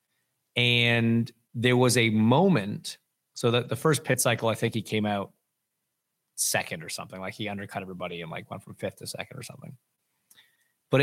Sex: male